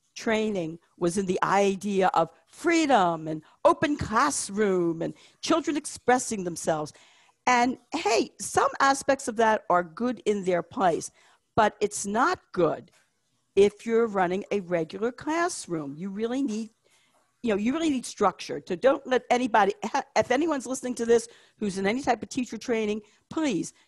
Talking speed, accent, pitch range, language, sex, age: 155 wpm, American, 195-245 Hz, English, female, 50-69